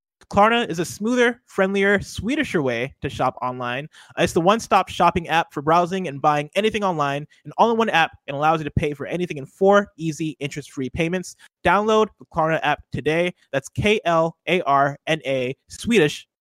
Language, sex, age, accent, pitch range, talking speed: English, male, 20-39, American, 140-190 Hz, 170 wpm